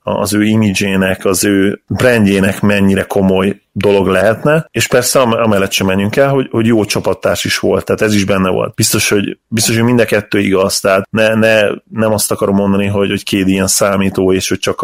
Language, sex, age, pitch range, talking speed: Hungarian, male, 30-49, 95-110 Hz, 200 wpm